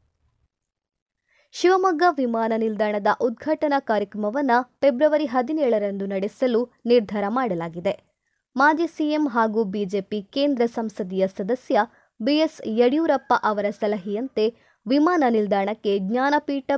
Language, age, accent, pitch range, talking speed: Kannada, 20-39, native, 210-285 Hz, 85 wpm